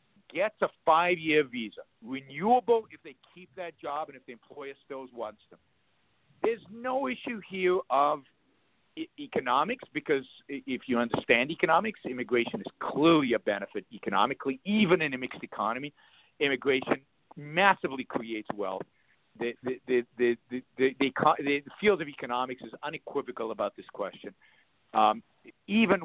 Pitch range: 130-200 Hz